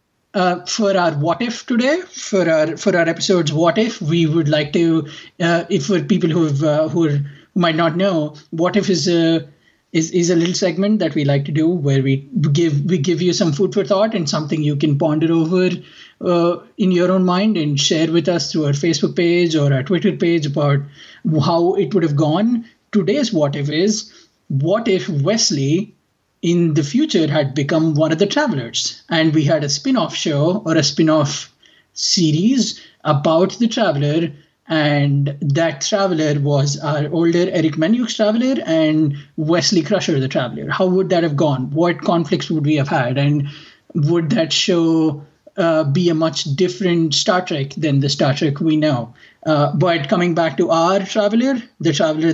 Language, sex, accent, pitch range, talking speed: English, male, Indian, 150-185 Hz, 185 wpm